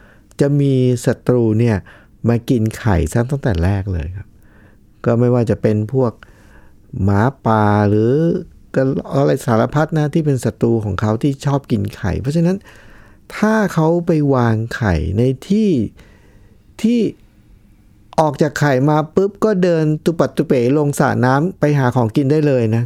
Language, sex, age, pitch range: Thai, male, 60-79, 105-135 Hz